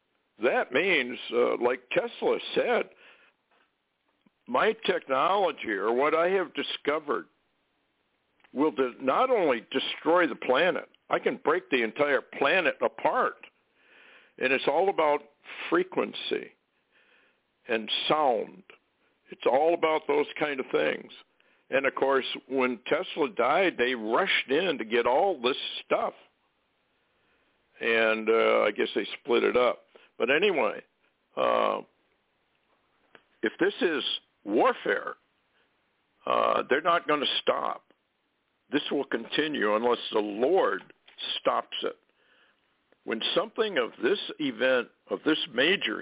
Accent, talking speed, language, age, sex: American, 120 wpm, English, 60-79, male